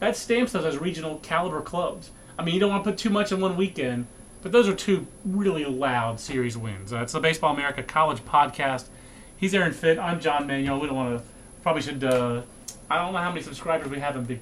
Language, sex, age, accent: English, male, 30-49, American